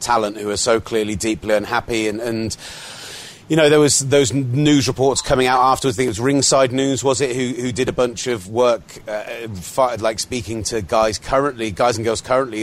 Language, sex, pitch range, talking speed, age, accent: English, male, 110-135 Hz, 215 wpm, 30-49, British